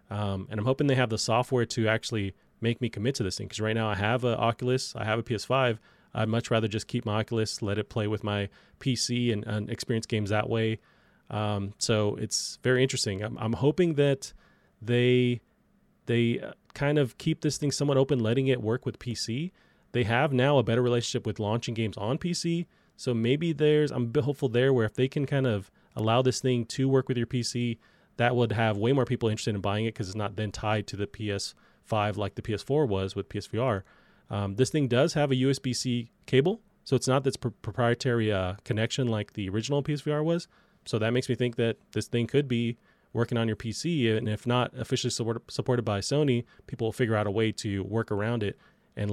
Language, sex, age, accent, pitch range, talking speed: English, male, 30-49, American, 105-130 Hz, 220 wpm